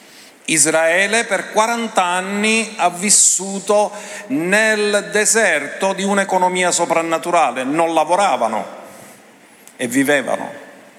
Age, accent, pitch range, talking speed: 50-69, native, 170-215 Hz, 80 wpm